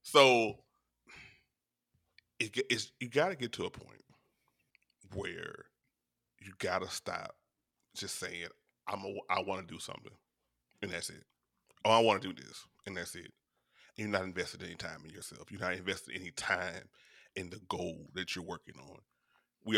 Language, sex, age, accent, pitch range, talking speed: English, male, 30-49, American, 110-135 Hz, 175 wpm